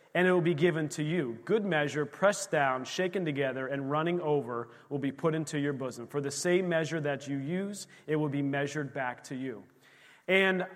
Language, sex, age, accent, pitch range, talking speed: English, male, 30-49, American, 150-185 Hz, 205 wpm